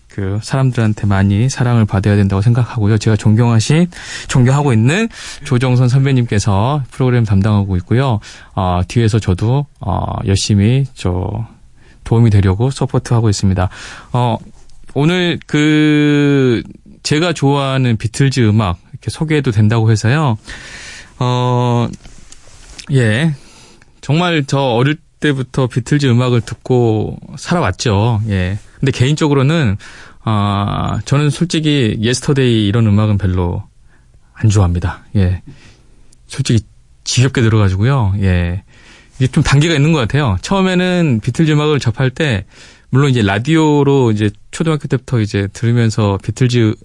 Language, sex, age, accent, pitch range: Korean, male, 20-39, native, 105-135 Hz